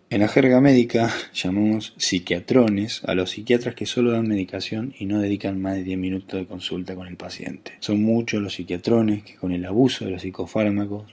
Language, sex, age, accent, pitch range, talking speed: Spanish, male, 20-39, Argentinian, 90-110 Hz, 195 wpm